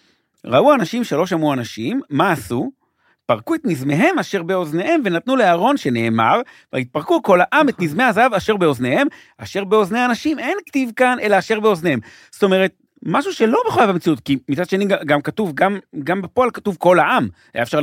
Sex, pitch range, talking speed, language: male, 135-220 Hz, 170 wpm, Hebrew